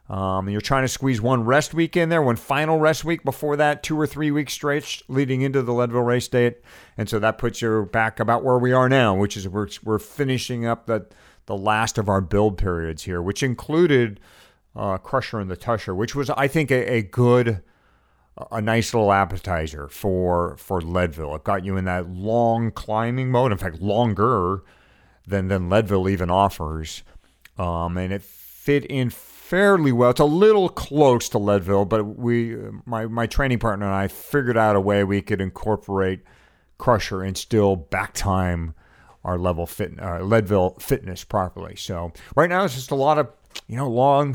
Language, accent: English, American